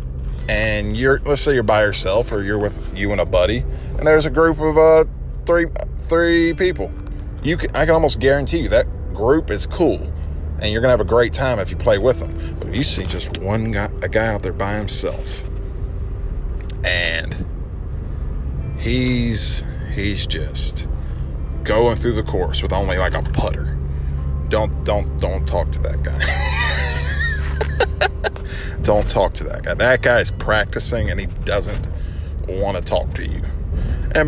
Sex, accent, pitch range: male, American, 70-105 Hz